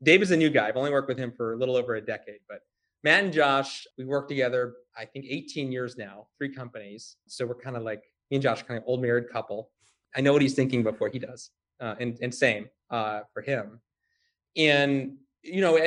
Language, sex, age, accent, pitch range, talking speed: English, male, 30-49, American, 120-145 Hz, 230 wpm